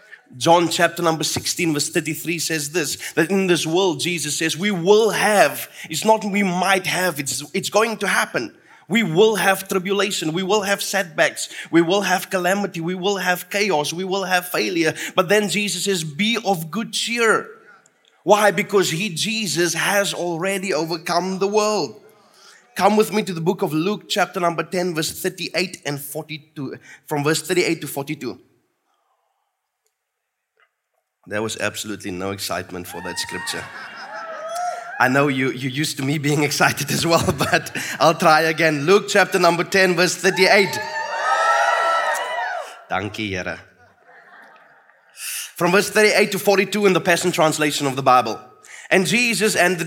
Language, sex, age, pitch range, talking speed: English, male, 20-39, 160-200 Hz, 155 wpm